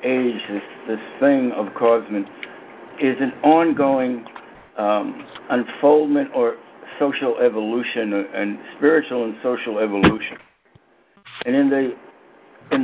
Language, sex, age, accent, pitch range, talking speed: English, male, 60-79, American, 110-145 Hz, 105 wpm